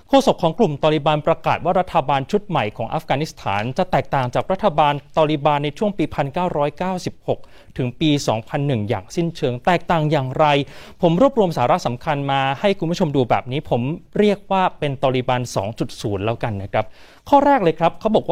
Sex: male